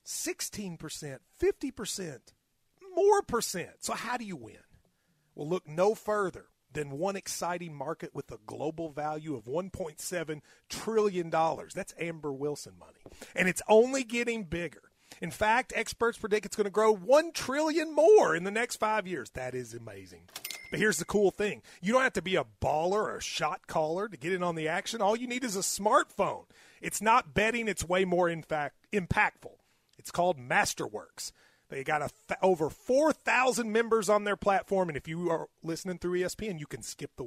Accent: American